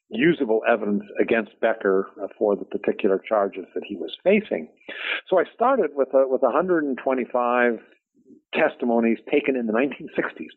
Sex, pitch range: male, 110-135 Hz